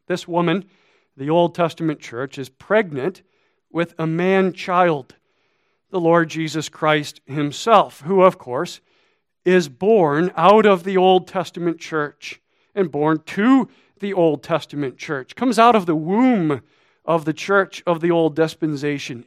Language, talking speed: English, 145 wpm